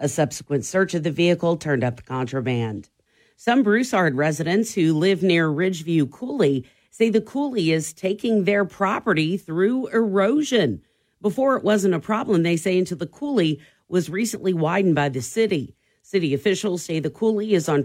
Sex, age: female, 40-59